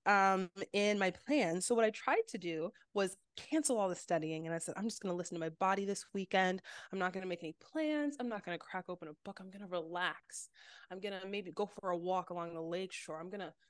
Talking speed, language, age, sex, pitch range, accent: 245 wpm, English, 20-39, female, 185-260 Hz, American